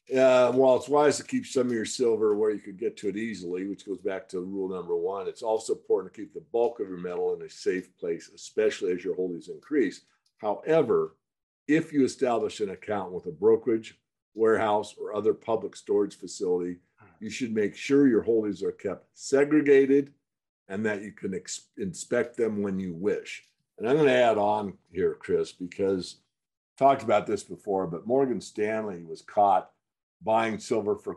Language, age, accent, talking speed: English, 50-69, American, 195 wpm